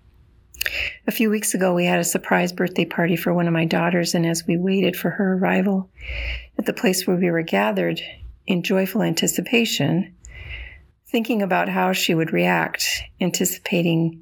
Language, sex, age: English, female, 40-59